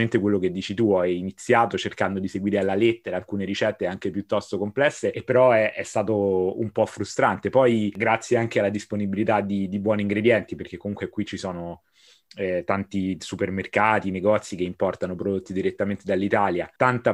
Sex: male